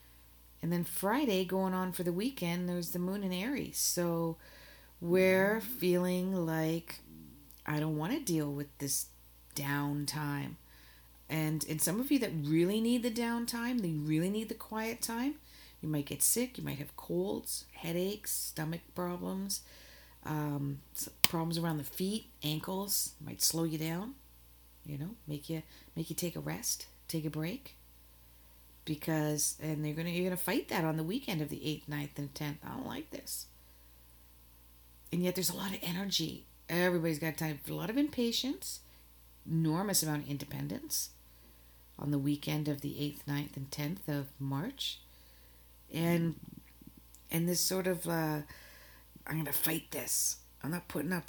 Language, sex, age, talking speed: English, female, 40-59, 160 wpm